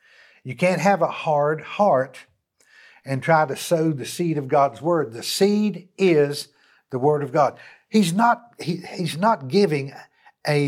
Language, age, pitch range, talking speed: English, 50-69, 150-190 Hz, 150 wpm